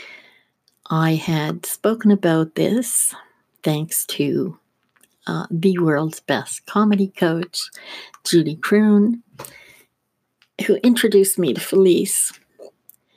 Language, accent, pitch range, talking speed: English, American, 150-195 Hz, 90 wpm